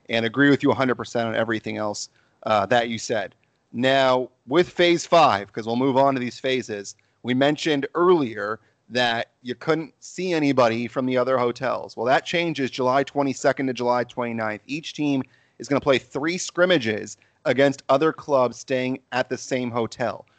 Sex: male